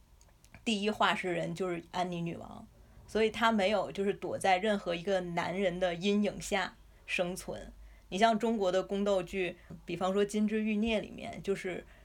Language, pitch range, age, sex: Chinese, 175-215 Hz, 20-39, female